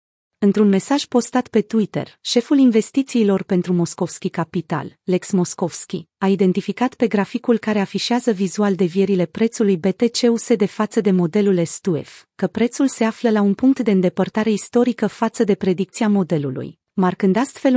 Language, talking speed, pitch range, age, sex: Romanian, 145 wpm, 185-225 Hz, 30-49, female